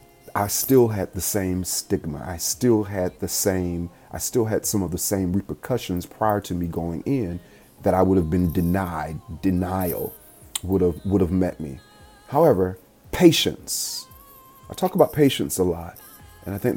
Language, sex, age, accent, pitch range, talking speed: English, male, 30-49, American, 90-115 Hz, 170 wpm